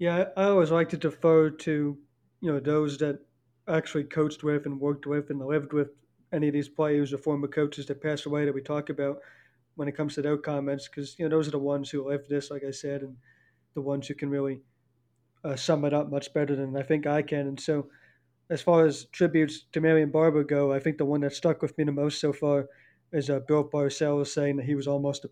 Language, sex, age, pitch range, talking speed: English, male, 20-39, 140-155 Hz, 240 wpm